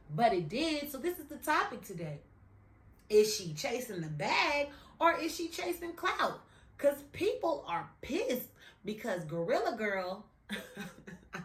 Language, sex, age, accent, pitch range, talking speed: English, female, 30-49, American, 170-235 Hz, 140 wpm